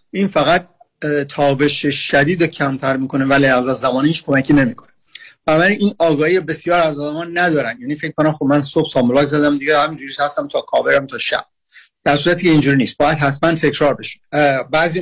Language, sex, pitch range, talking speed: Persian, male, 135-160 Hz, 165 wpm